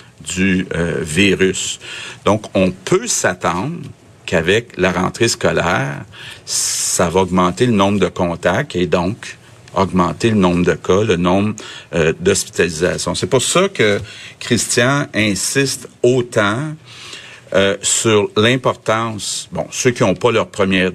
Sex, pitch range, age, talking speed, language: male, 95-125 Hz, 60-79, 130 wpm, French